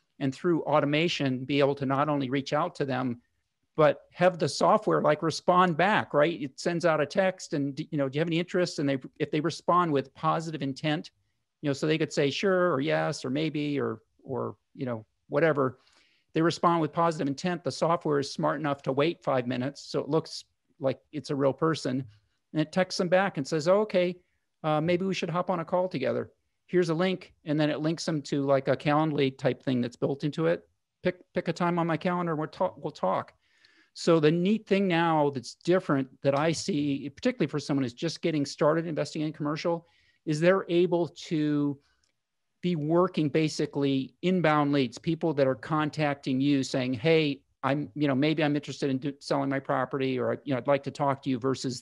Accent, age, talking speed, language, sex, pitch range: American, 50-69, 215 wpm, English, male, 140-170 Hz